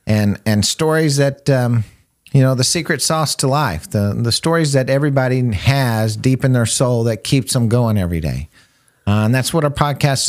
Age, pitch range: 50-69, 90-125 Hz